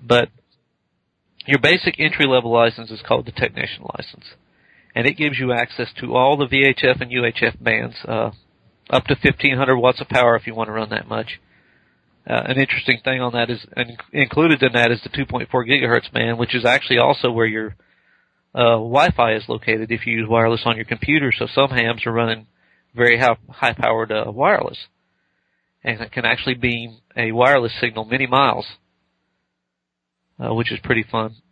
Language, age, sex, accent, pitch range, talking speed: English, 40-59, male, American, 115-135 Hz, 175 wpm